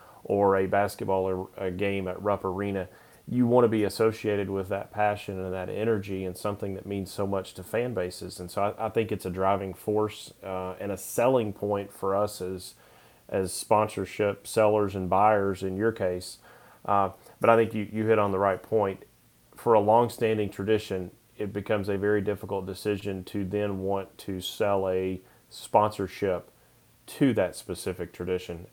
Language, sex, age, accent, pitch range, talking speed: English, male, 30-49, American, 95-110 Hz, 180 wpm